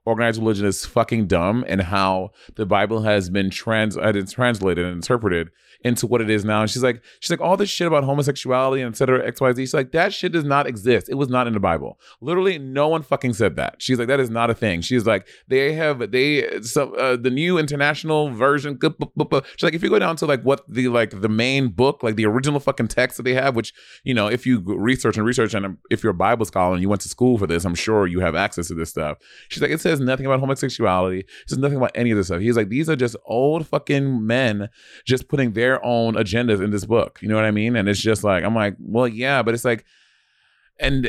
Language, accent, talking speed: English, American, 255 wpm